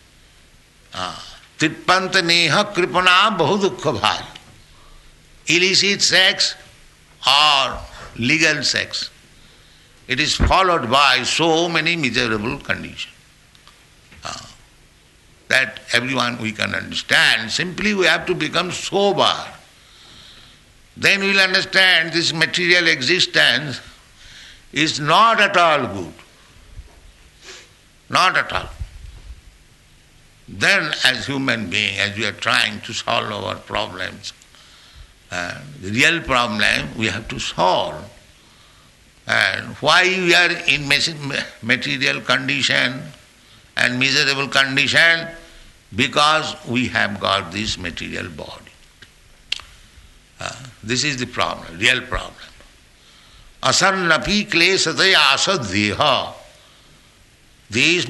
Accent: Indian